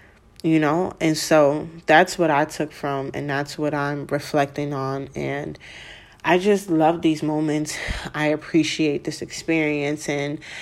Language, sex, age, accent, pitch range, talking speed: English, female, 20-39, American, 145-165 Hz, 145 wpm